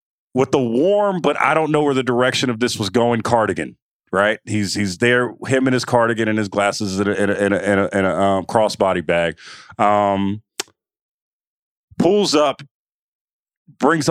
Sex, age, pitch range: male, 30-49, 115-170 Hz